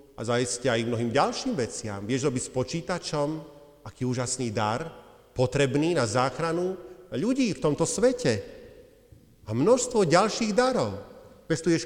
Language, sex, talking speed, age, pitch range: Slovak, male, 125 wpm, 40-59, 120-160 Hz